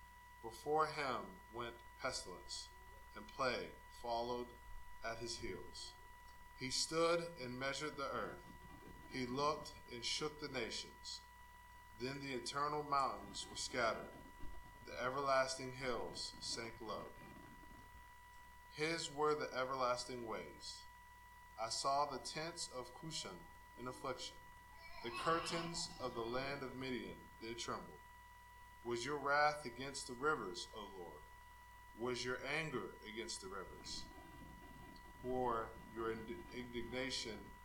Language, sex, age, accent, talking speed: English, male, 20-39, American, 115 wpm